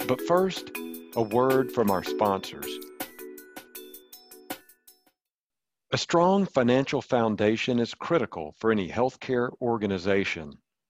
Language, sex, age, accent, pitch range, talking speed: English, male, 50-69, American, 100-140 Hz, 95 wpm